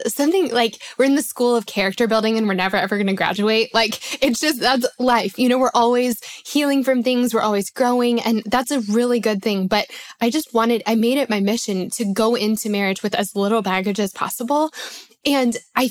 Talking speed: 220 wpm